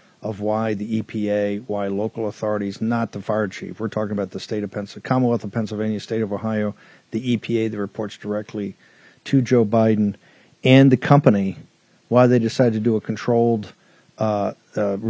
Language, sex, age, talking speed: English, male, 50-69, 175 wpm